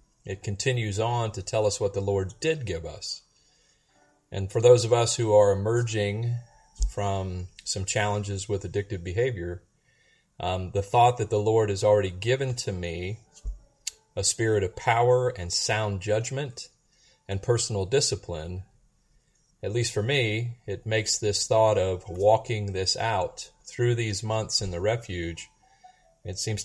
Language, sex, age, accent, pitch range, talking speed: English, male, 30-49, American, 100-125 Hz, 150 wpm